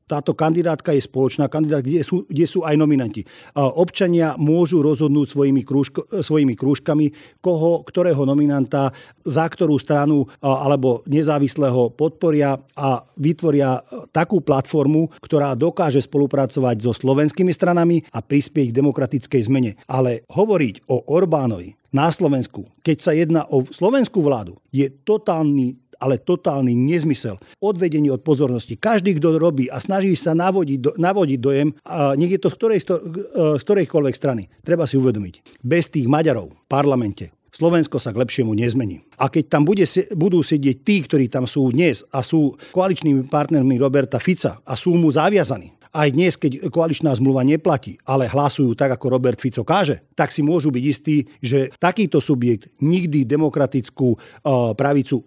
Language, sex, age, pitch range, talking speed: Slovak, male, 40-59, 135-165 Hz, 150 wpm